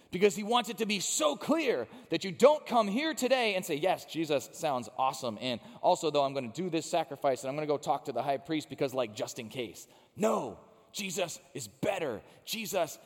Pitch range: 145-210 Hz